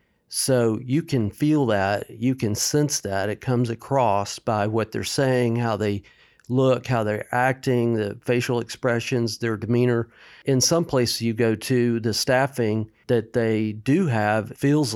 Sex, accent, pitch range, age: male, American, 110-125 Hz, 50-69